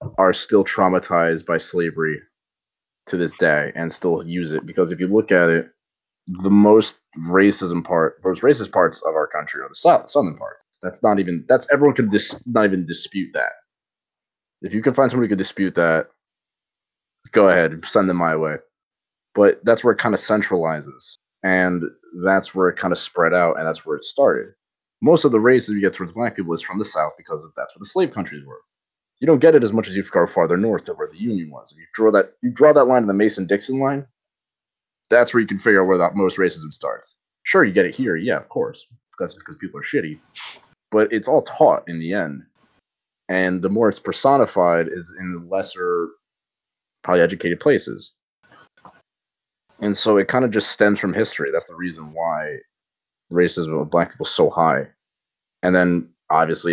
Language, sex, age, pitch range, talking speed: English, male, 20-39, 85-110 Hz, 210 wpm